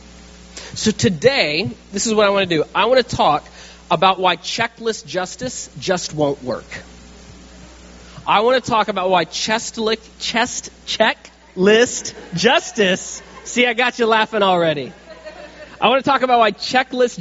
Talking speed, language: 150 wpm, English